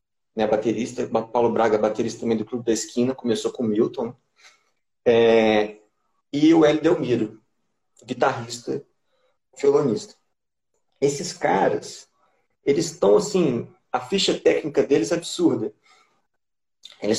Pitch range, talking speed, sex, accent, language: 115-155 Hz, 120 wpm, male, Brazilian, Portuguese